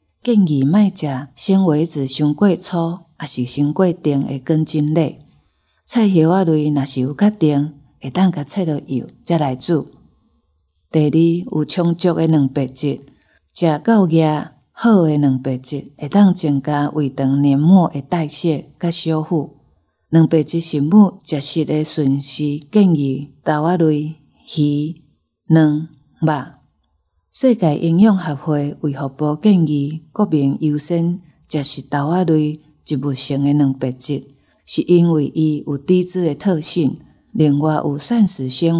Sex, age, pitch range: female, 50-69, 140-170 Hz